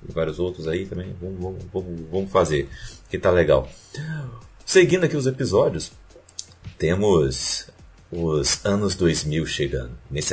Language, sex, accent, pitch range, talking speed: Portuguese, male, Brazilian, 85-125 Hz, 135 wpm